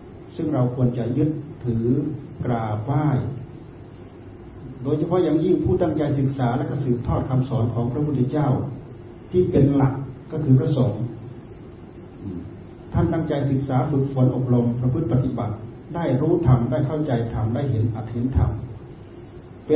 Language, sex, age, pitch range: Thai, male, 40-59, 120-145 Hz